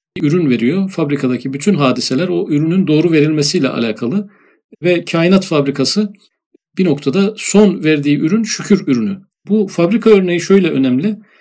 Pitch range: 145-195 Hz